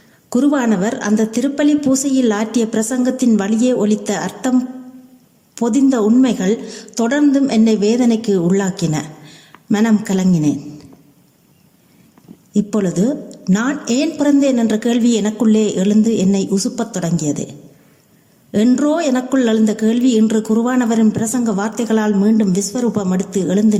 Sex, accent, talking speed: female, native, 100 wpm